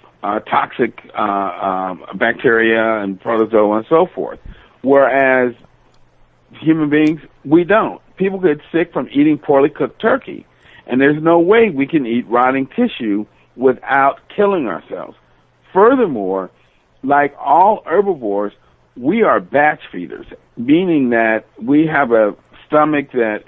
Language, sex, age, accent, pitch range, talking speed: English, male, 50-69, American, 115-155 Hz, 130 wpm